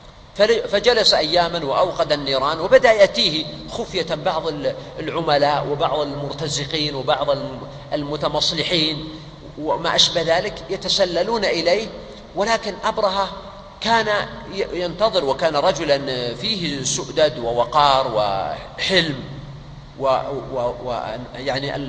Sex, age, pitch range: male, 40-59, 140-185 Hz